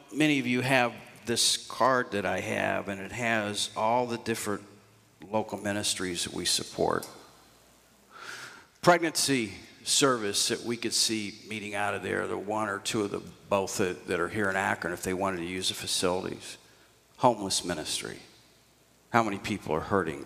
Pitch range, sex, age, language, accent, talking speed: 100-130 Hz, male, 50-69, English, American, 165 wpm